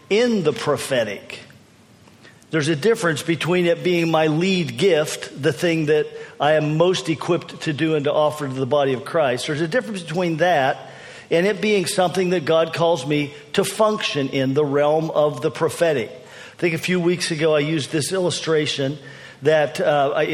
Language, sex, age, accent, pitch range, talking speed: English, male, 50-69, American, 145-180 Hz, 185 wpm